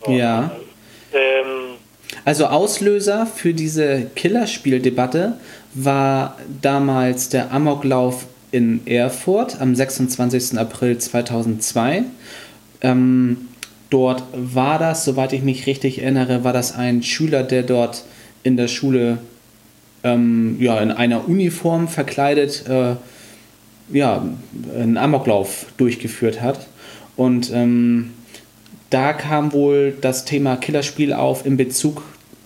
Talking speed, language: 105 wpm, German